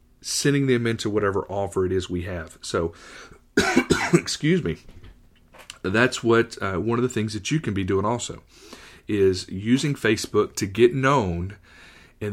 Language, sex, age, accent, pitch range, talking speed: English, male, 40-59, American, 95-120 Hz, 155 wpm